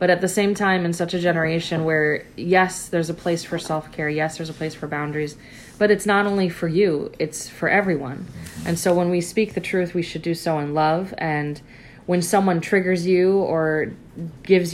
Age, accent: 20-39, American